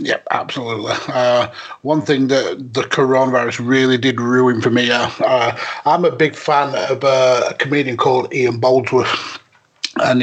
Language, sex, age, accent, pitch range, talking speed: English, male, 30-49, British, 120-135 Hz, 165 wpm